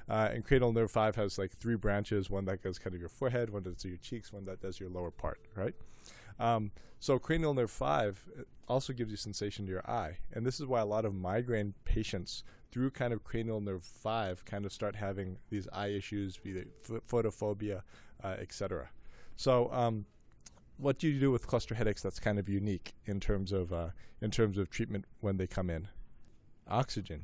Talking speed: 205 wpm